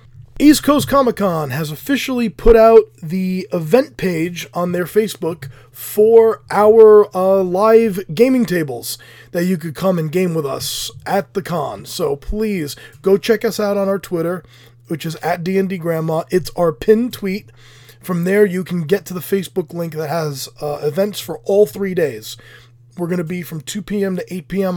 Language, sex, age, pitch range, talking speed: English, male, 20-39, 155-195 Hz, 185 wpm